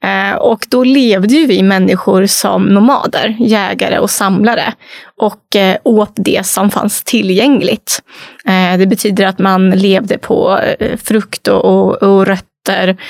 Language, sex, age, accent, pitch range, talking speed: Swedish, female, 20-39, native, 190-235 Hz, 115 wpm